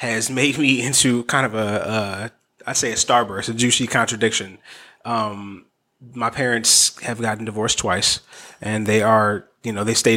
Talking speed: 170 wpm